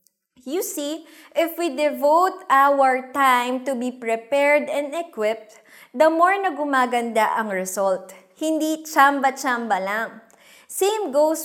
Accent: Filipino